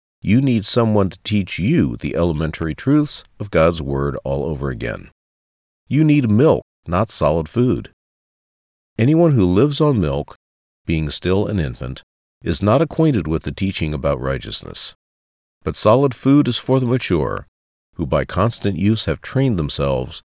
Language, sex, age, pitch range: English, male, 40-59, 70-110 Hz